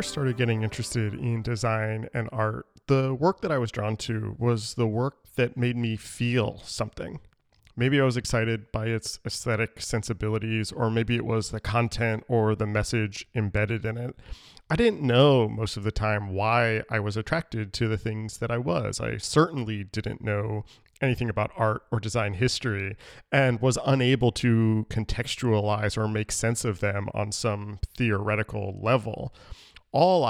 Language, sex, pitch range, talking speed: English, male, 105-125 Hz, 165 wpm